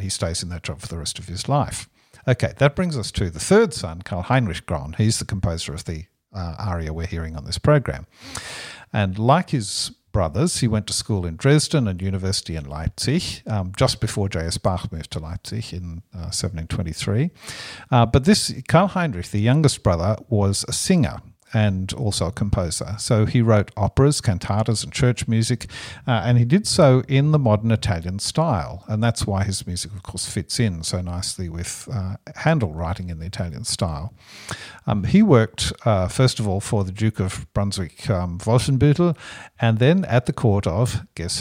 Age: 50-69